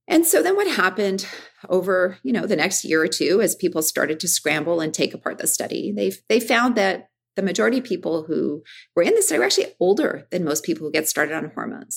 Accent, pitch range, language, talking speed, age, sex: American, 160-245 Hz, English, 230 wpm, 40-59, female